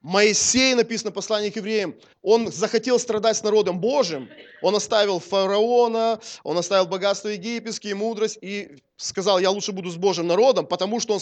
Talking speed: 165 wpm